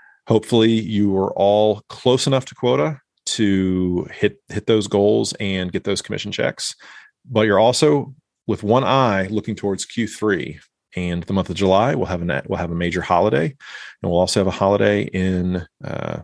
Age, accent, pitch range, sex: 30-49, American, 95-130 Hz, male